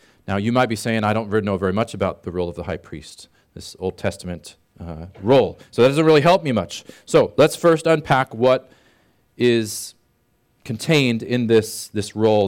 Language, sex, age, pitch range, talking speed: English, male, 40-59, 105-160 Hz, 190 wpm